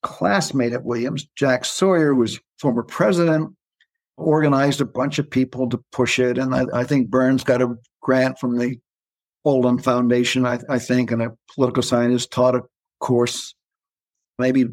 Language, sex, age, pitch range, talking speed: English, male, 60-79, 125-155 Hz, 165 wpm